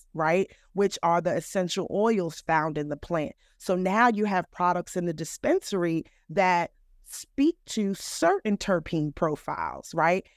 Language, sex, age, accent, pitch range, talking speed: English, female, 30-49, American, 160-200 Hz, 145 wpm